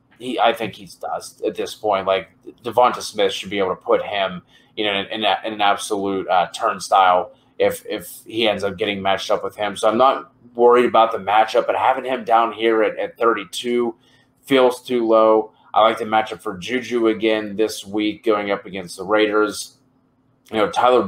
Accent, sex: American, male